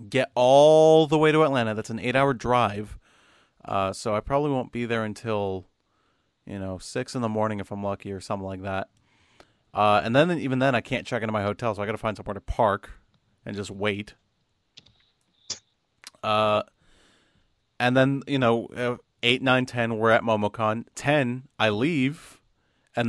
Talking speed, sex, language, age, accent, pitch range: 180 wpm, male, English, 30-49, American, 105-120 Hz